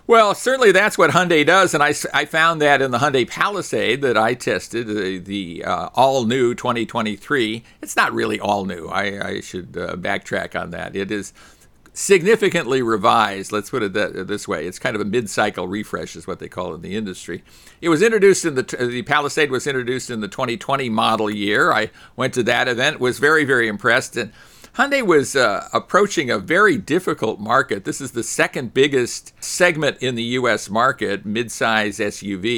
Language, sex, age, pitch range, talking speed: English, male, 60-79, 105-140 Hz, 190 wpm